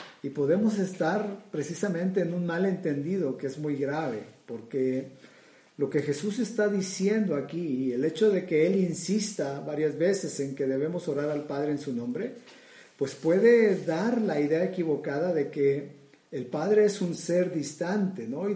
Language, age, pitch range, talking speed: Spanish, 50-69, 135-185 Hz, 170 wpm